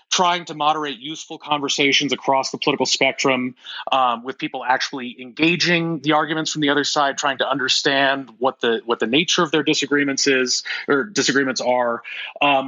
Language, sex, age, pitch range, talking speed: English, male, 30-49, 125-155 Hz, 170 wpm